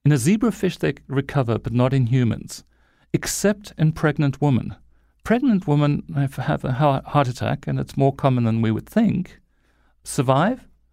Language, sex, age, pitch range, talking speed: English, male, 40-59, 115-175 Hz, 170 wpm